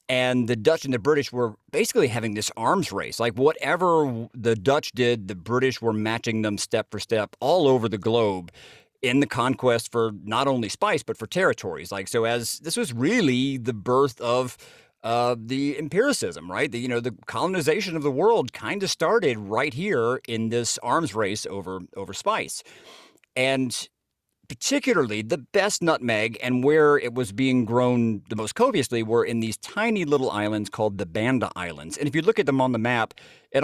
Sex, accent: male, American